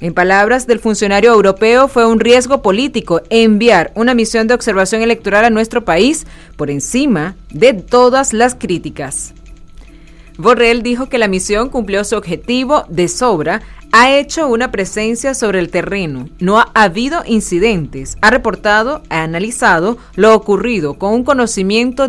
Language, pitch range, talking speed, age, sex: Spanish, 185-245 Hz, 145 wpm, 30-49, female